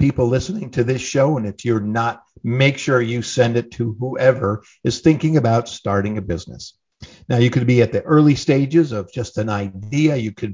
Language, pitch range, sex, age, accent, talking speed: English, 110-140 Hz, male, 50-69, American, 205 wpm